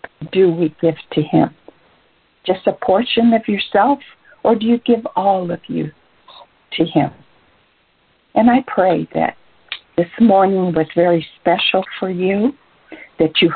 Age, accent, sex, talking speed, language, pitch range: 60-79, American, female, 140 wpm, English, 180-230 Hz